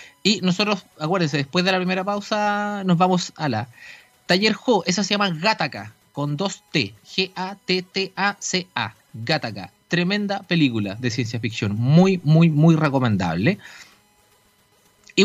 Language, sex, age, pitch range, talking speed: Spanish, male, 30-49, 155-195 Hz, 130 wpm